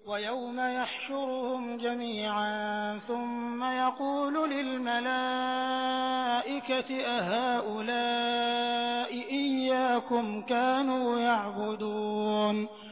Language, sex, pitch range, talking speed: Hindi, male, 235-275 Hz, 45 wpm